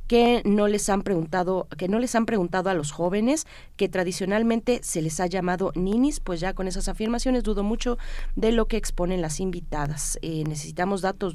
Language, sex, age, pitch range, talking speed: Spanish, female, 30-49, 170-220 Hz, 190 wpm